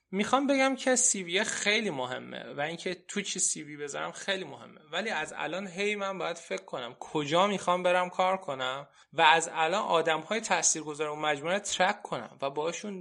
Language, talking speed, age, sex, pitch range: Persian, 185 wpm, 20-39, male, 155-190 Hz